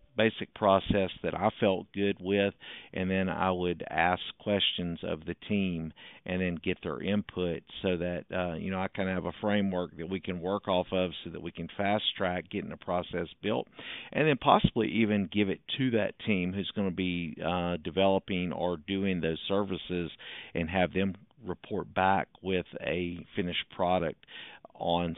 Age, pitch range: 50-69, 90-105 Hz